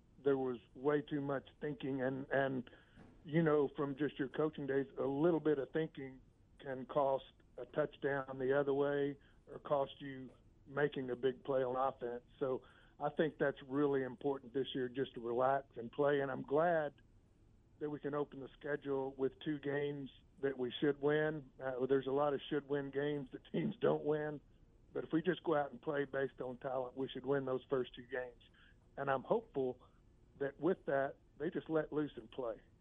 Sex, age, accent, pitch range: male, 50-69, American, 125-145 Hz